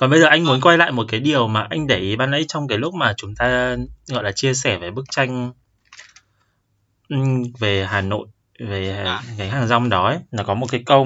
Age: 20-39